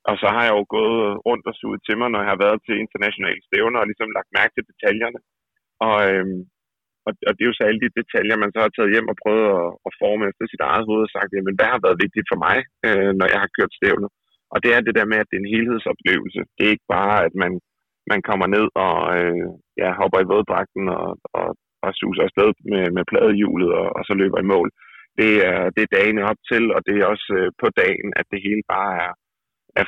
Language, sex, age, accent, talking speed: Danish, male, 30-49, native, 250 wpm